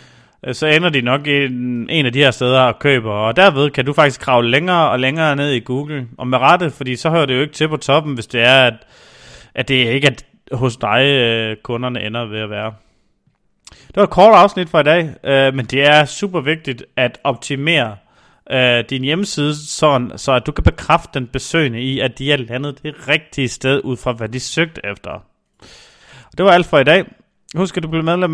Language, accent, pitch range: Danish, native, 130-160 Hz